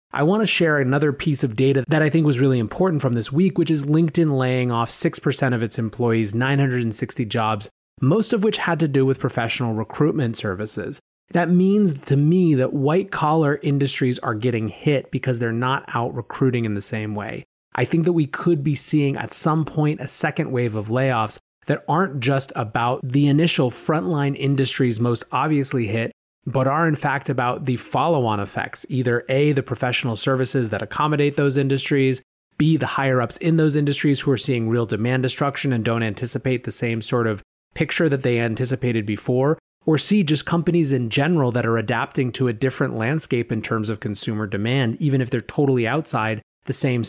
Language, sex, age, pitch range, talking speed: English, male, 30-49, 115-150 Hz, 190 wpm